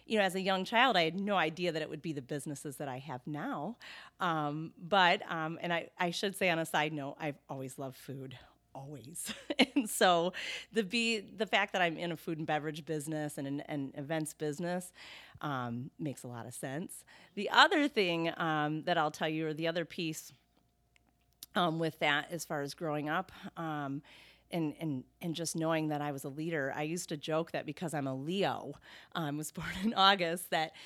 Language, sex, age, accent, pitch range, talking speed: English, female, 40-59, American, 150-185 Hz, 215 wpm